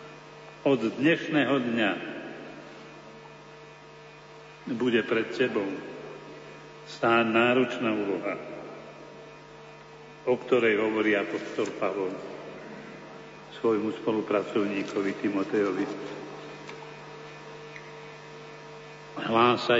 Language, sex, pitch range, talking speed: Slovak, male, 115-135 Hz, 55 wpm